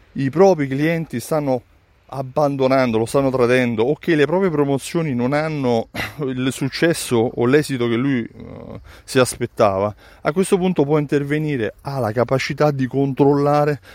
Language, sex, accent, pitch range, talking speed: Italian, male, native, 110-145 Hz, 145 wpm